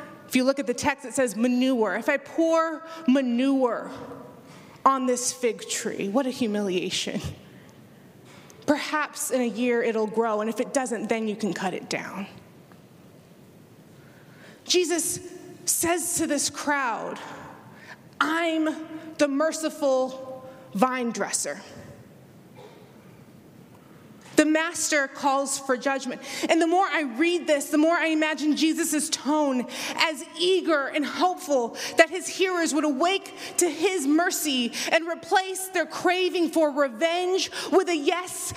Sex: female